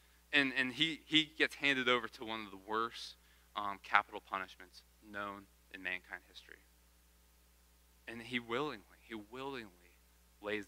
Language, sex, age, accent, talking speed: English, male, 20-39, American, 140 wpm